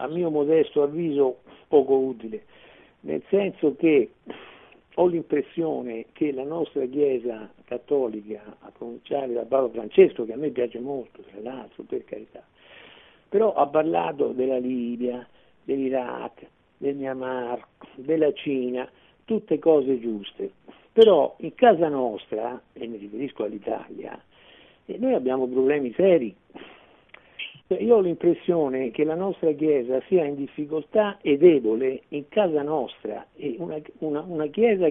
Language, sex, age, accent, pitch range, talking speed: Italian, male, 60-79, native, 130-175 Hz, 125 wpm